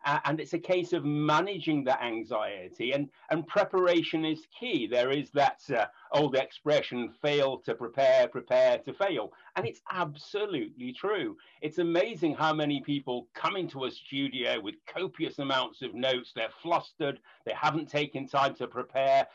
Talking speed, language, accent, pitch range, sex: 160 wpm, English, British, 135-170 Hz, male